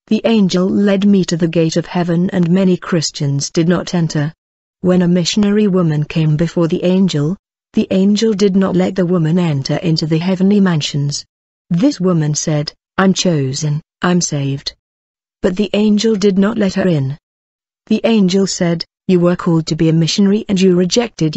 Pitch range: 165-195 Hz